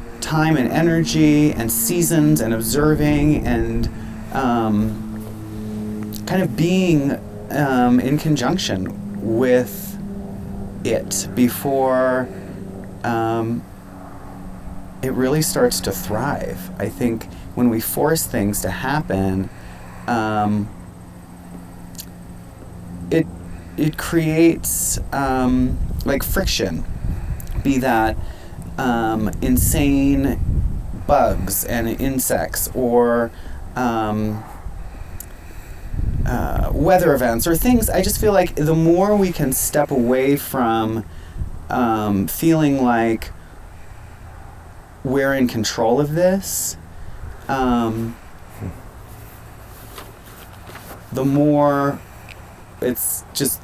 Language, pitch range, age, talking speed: English, 95-140 Hz, 30-49, 85 wpm